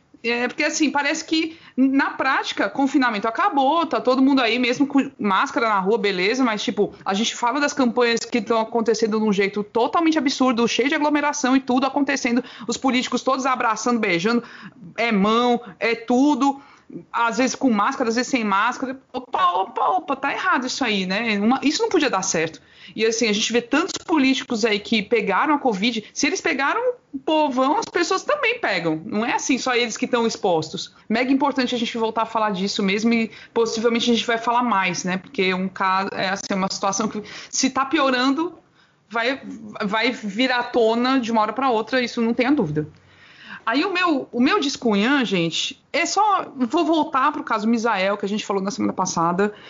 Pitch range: 205-265 Hz